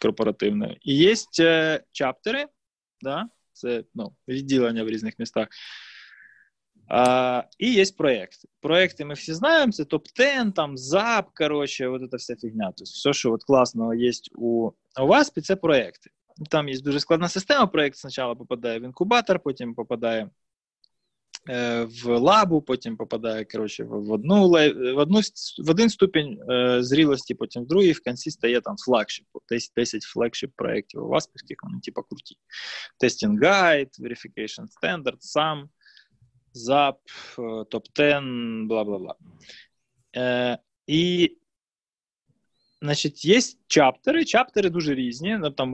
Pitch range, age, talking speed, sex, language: 120-175 Hz, 20-39, 125 wpm, male, Ukrainian